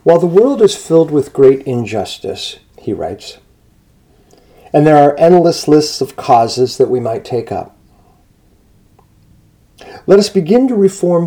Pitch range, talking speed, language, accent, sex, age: 120-180 Hz, 145 wpm, English, American, male, 50-69